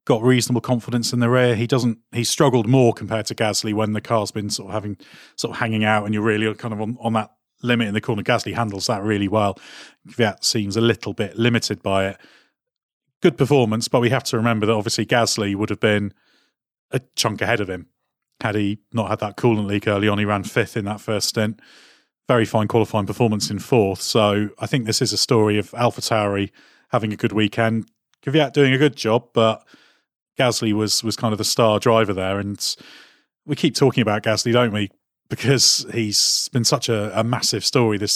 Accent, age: British, 30-49